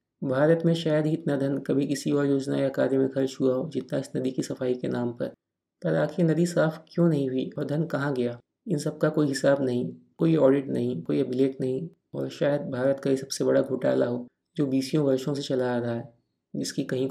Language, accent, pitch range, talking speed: Hindi, native, 130-150 Hz, 230 wpm